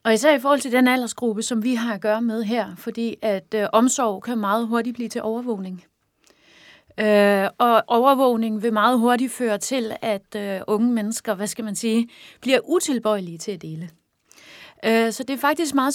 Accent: native